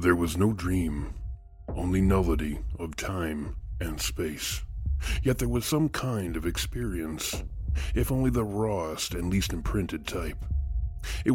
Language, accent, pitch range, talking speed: English, American, 80-95 Hz, 135 wpm